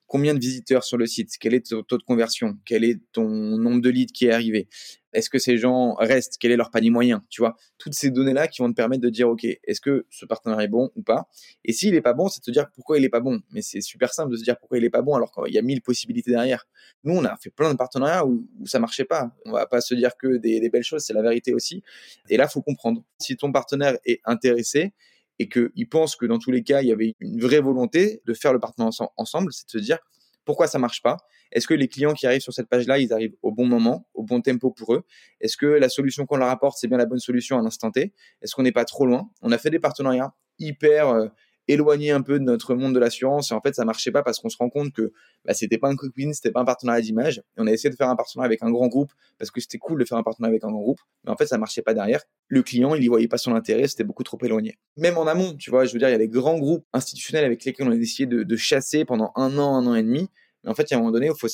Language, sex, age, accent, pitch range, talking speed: French, male, 20-39, French, 115-140 Hz, 305 wpm